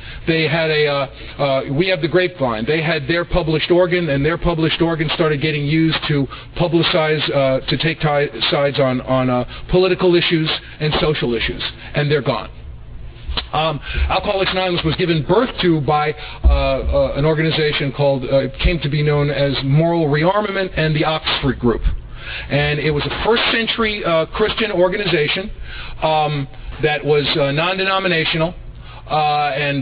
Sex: male